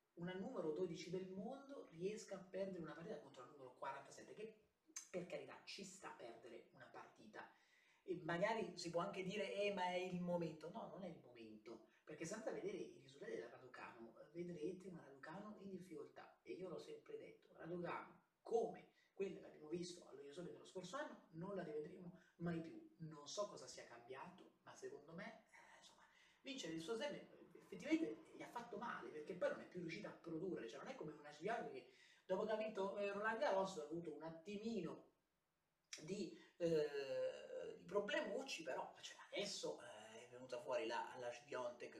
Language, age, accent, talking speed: Italian, 30-49, native, 185 wpm